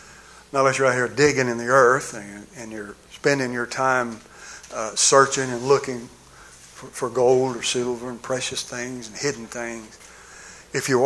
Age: 60-79